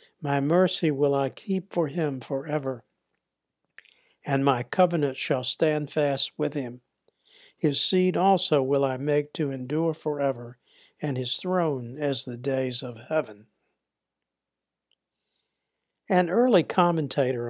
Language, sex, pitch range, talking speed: English, male, 130-170 Hz, 125 wpm